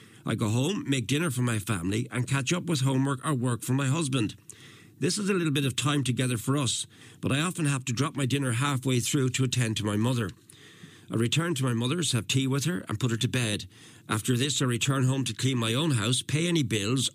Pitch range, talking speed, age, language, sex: 120-145 Hz, 245 wpm, 50-69, English, male